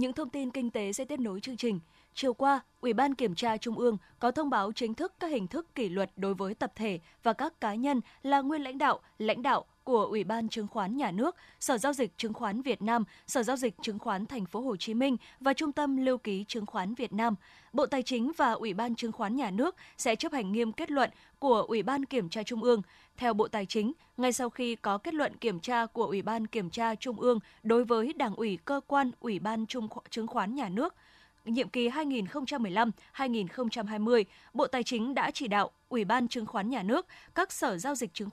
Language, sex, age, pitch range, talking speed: Vietnamese, female, 20-39, 220-265 Hz, 235 wpm